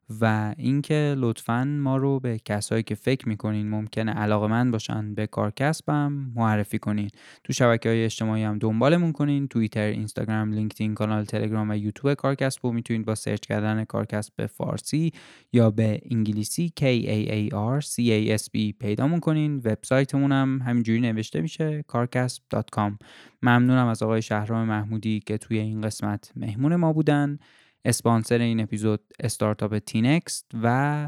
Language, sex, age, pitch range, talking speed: English, male, 10-29, 110-125 Hz, 150 wpm